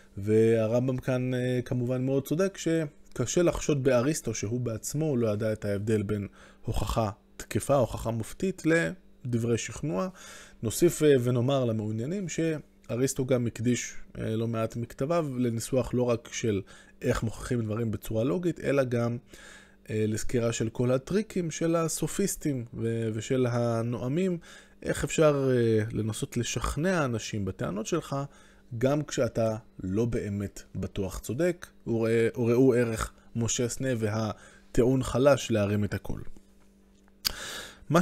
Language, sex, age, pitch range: Hebrew, male, 20-39, 110-150 Hz